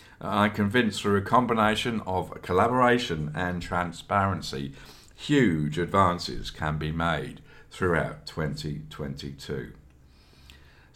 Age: 50-69